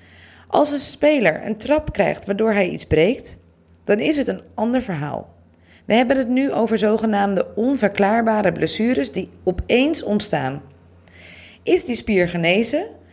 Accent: Dutch